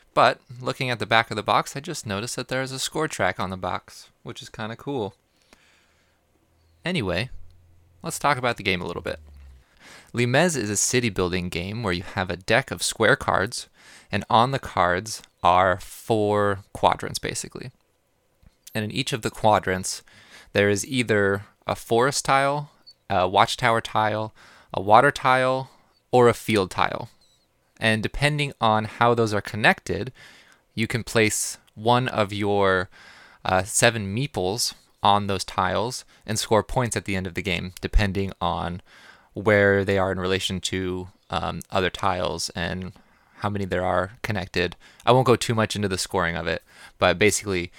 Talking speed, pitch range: 170 wpm, 90-115 Hz